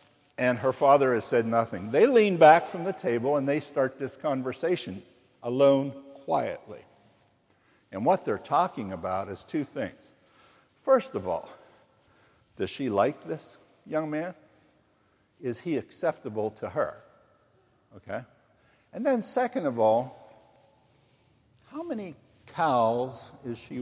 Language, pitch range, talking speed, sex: English, 120-150 Hz, 130 wpm, male